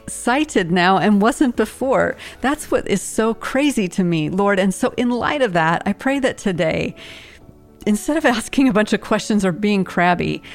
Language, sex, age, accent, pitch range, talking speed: English, female, 40-59, American, 170-215 Hz, 190 wpm